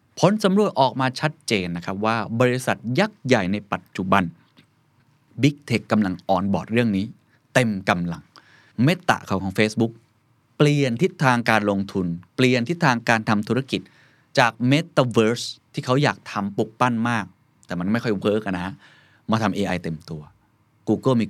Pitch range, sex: 100-135 Hz, male